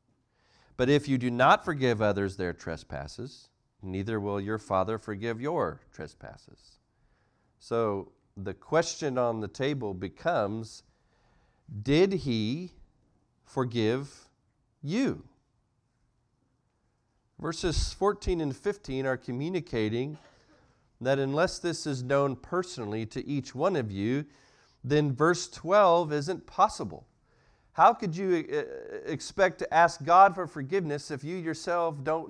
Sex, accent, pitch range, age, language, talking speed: male, American, 125-170 Hz, 40-59, English, 115 wpm